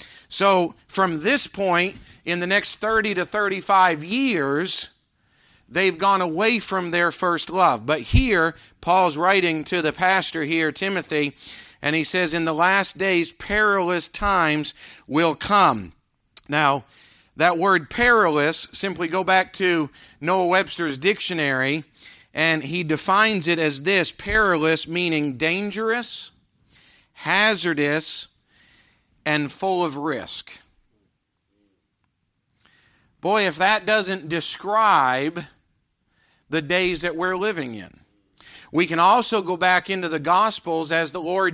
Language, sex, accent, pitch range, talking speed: English, male, American, 160-195 Hz, 125 wpm